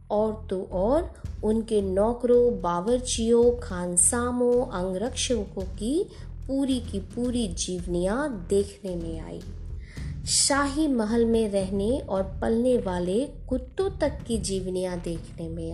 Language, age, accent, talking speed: Hindi, 20-39, native, 110 wpm